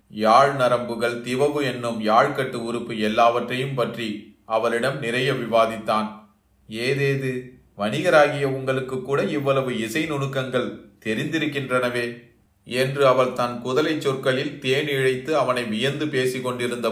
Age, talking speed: 30-49, 105 wpm